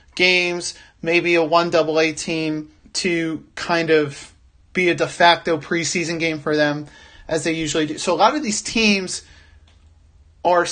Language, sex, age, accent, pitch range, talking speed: English, male, 30-49, American, 140-180 Hz, 160 wpm